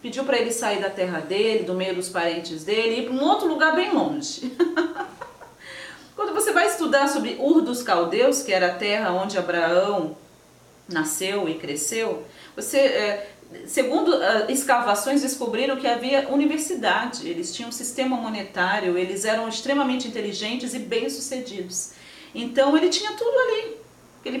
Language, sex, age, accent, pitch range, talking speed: Portuguese, female, 40-59, Brazilian, 185-275 Hz, 150 wpm